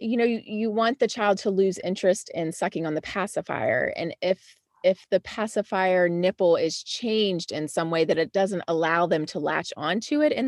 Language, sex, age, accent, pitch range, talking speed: English, female, 30-49, American, 165-205 Hz, 205 wpm